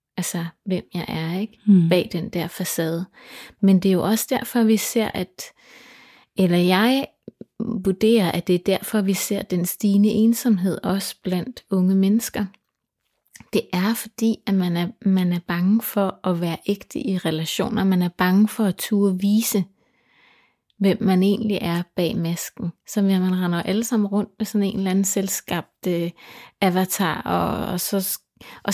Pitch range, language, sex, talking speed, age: 180-220 Hz, Danish, female, 165 wpm, 30-49